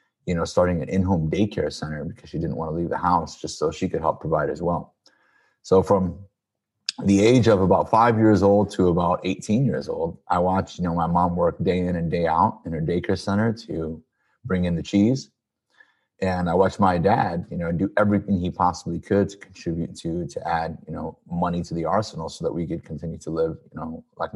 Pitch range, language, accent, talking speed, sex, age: 85-100 Hz, English, American, 225 wpm, male, 30-49